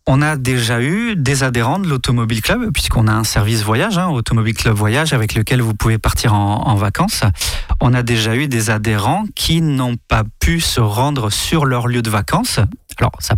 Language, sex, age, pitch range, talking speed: French, male, 30-49, 110-135 Hz, 200 wpm